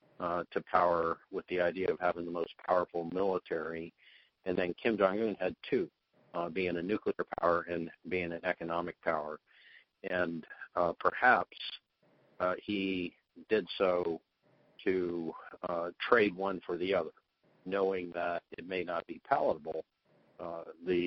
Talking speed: 145 wpm